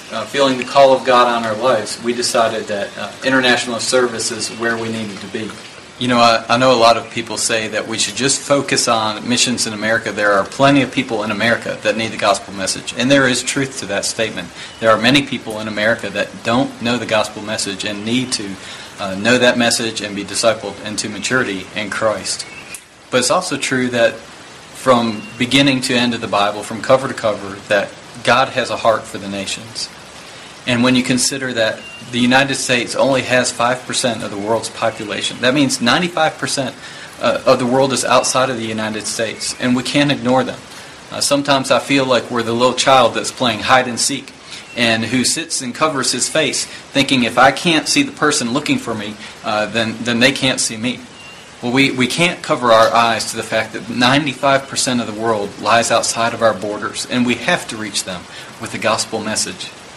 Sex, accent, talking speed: male, American, 210 wpm